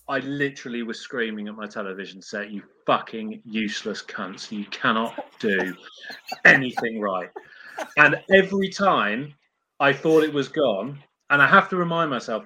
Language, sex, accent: English, male, British